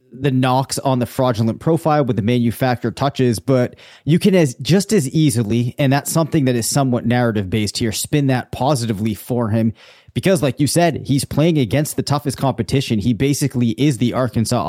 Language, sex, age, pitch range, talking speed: English, male, 30-49, 120-150 Hz, 190 wpm